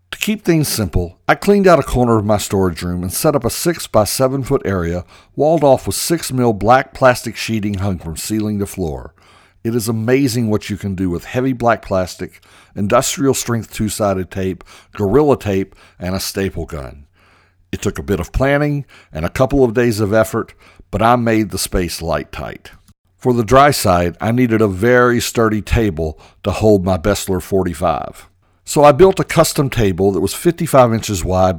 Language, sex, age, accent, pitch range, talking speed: English, male, 60-79, American, 90-120 Hz, 195 wpm